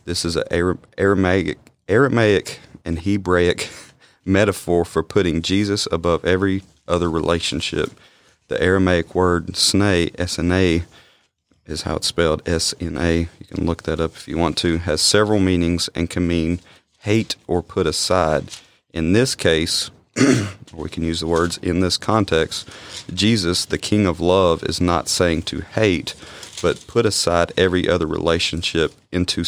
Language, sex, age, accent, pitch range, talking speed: English, male, 40-59, American, 85-95 Hz, 150 wpm